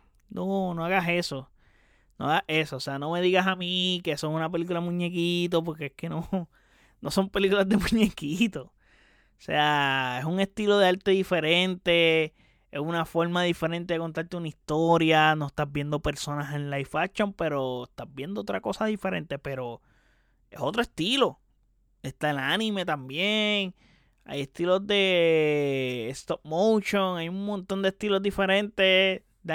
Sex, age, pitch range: male, 20-39, 145-190 Hz